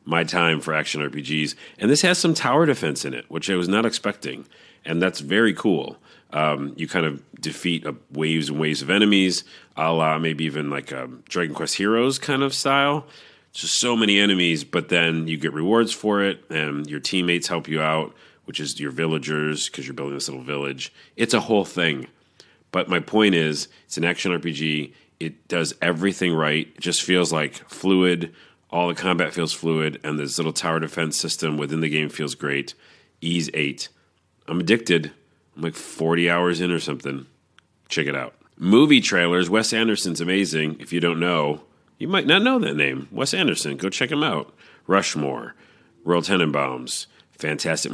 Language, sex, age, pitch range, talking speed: English, male, 40-59, 75-90 Hz, 185 wpm